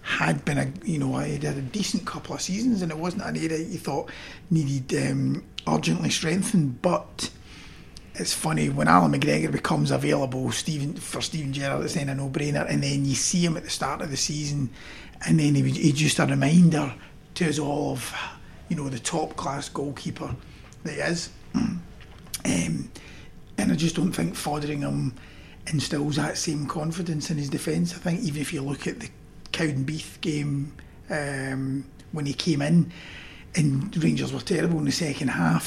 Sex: male